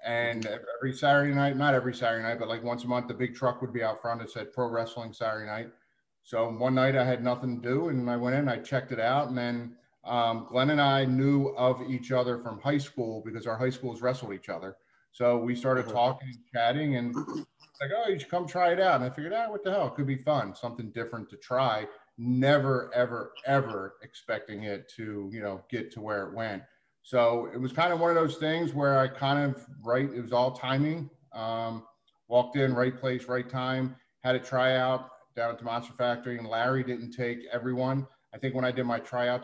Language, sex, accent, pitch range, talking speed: English, male, American, 115-130 Hz, 230 wpm